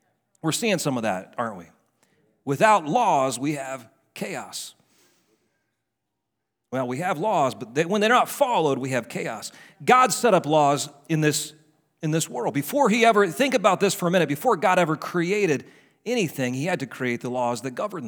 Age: 40-59